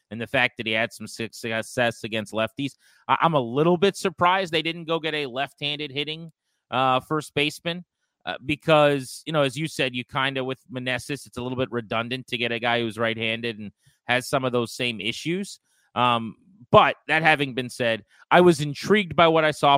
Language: English